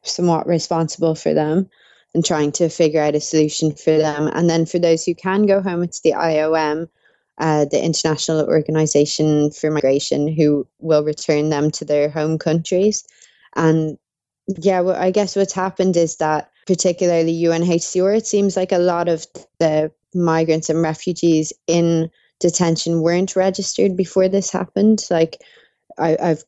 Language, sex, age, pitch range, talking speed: English, female, 20-39, 155-175 Hz, 150 wpm